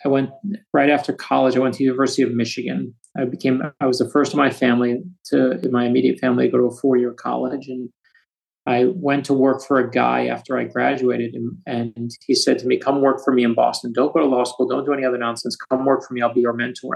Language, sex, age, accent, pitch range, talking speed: English, male, 30-49, American, 120-135 Hz, 260 wpm